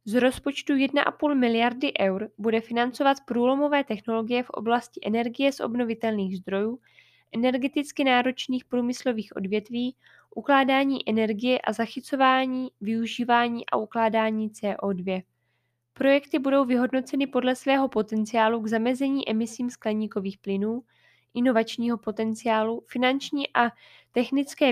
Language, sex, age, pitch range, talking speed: Czech, female, 10-29, 215-260 Hz, 105 wpm